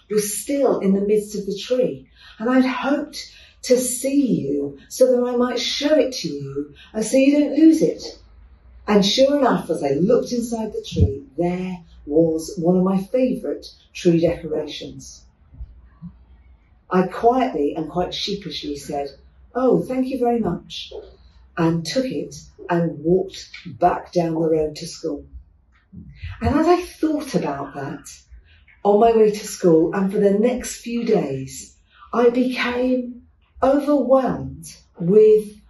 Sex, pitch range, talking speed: female, 160-245 Hz, 150 wpm